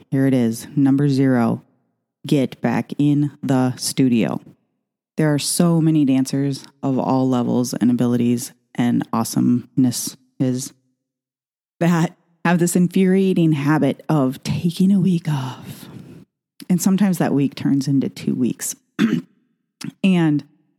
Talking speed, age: 120 wpm, 30-49